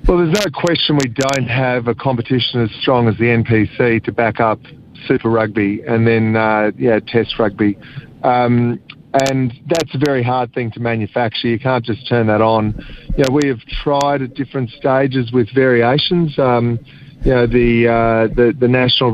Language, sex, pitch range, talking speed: English, male, 120-145 Hz, 180 wpm